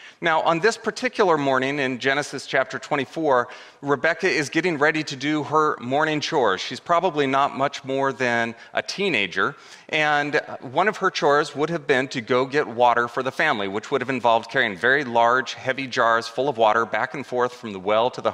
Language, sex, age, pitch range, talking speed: English, male, 30-49, 125-155 Hz, 200 wpm